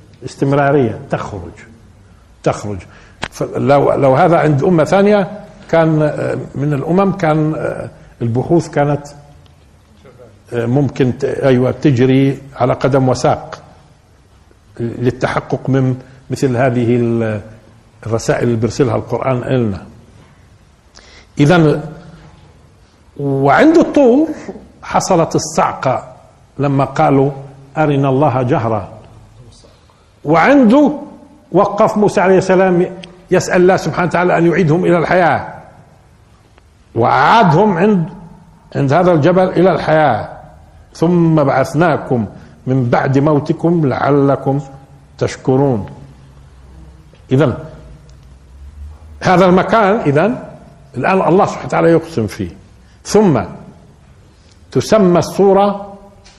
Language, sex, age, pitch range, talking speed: Arabic, male, 50-69, 115-170 Hz, 85 wpm